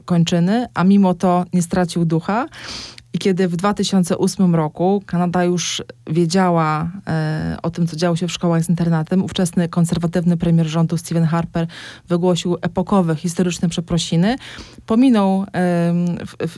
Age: 20-39